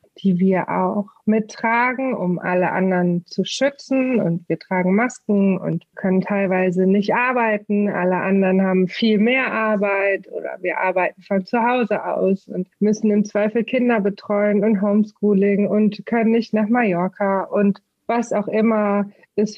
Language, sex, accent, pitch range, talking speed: German, female, German, 190-215 Hz, 150 wpm